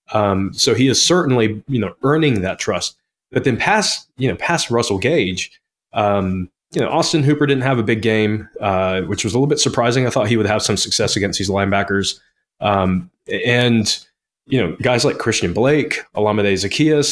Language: English